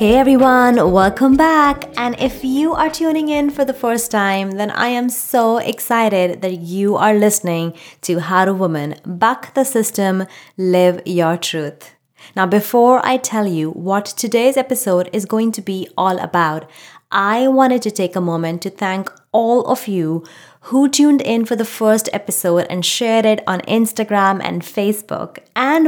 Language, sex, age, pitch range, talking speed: English, female, 20-39, 175-245 Hz, 170 wpm